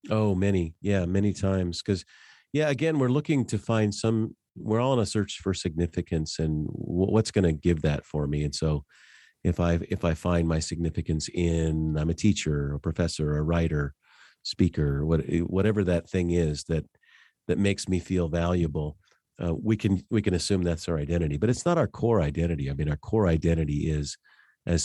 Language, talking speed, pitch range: English, 190 wpm, 80-100 Hz